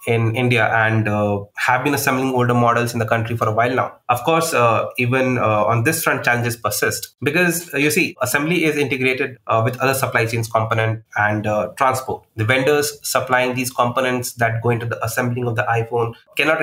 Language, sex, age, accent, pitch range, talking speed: English, male, 30-49, Indian, 115-140 Hz, 200 wpm